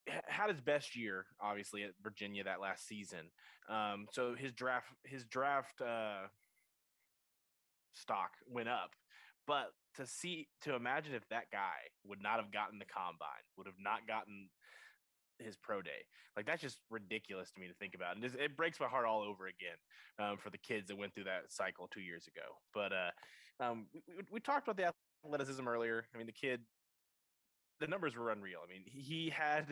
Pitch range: 100-130 Hz